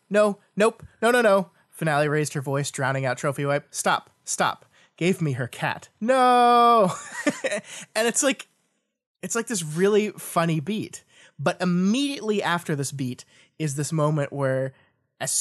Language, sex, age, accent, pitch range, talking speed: English, male, 20-39, American, 140-195 Hz, 150 wpm